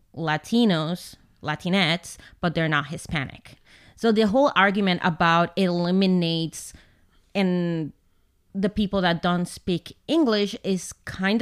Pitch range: 165-200 Hz